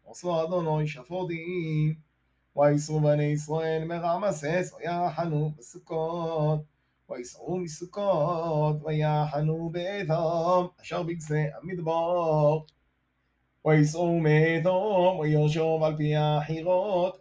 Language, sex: Hebrew, male